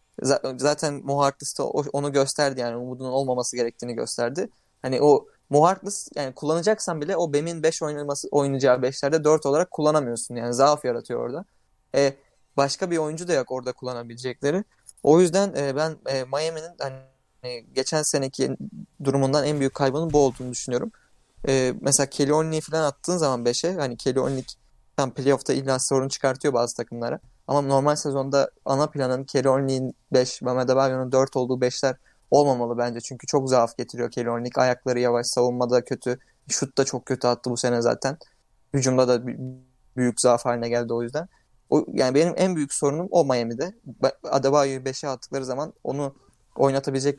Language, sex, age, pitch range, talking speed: Turkish, male, 20-39, 125-145 Hz, 160 wpm